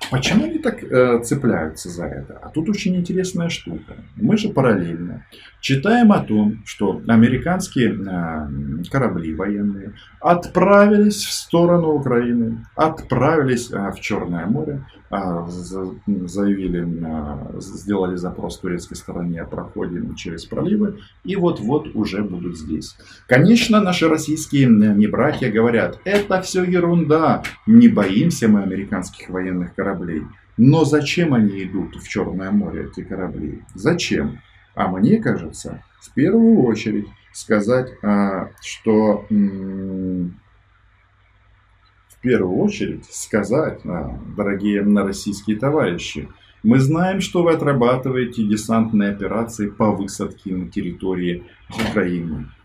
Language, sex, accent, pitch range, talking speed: Russian, male, native, 95-150 Hz, 115 wpm